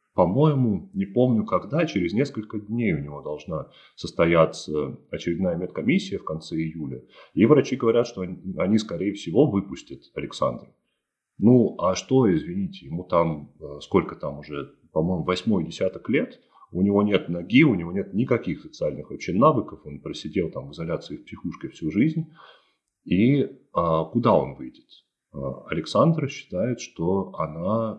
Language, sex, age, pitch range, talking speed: Russian, male, 30-49, 75-115 Hz, 140 wpm